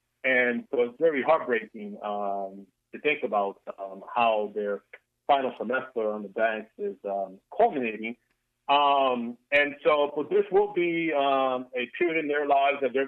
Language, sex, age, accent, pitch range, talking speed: English, male, 30-49, American, 115-140 Hz, 160 wpm